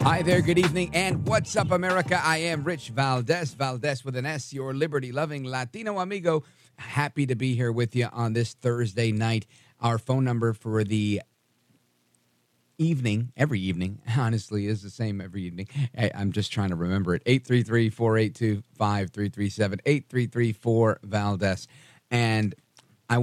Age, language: 40-59, English